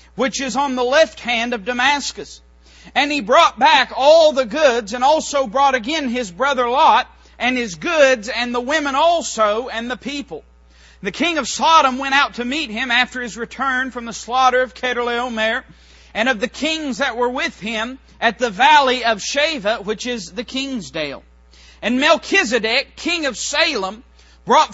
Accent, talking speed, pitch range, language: American, 175 wpm, 230-290 Hz, English